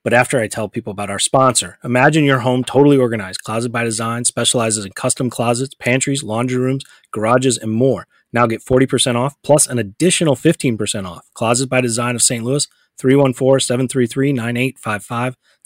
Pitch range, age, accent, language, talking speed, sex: 110-135 Hz, 30-49, American, English, 160 wpm, male